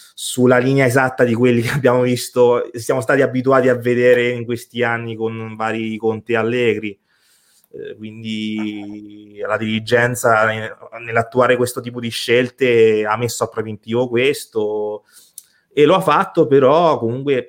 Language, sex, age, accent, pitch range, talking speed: Italian, male, 30-49, native, 110-125 Hz, 135 wpm